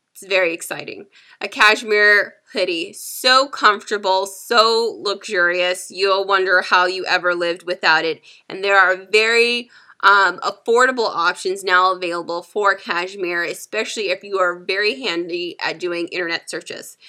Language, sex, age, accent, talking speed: English, female, 20-39, American, 135 wpm